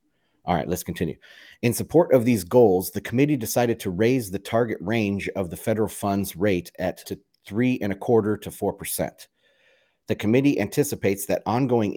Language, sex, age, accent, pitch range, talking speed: English, male, 30-49, American, 100-120 Hz, 180 wpm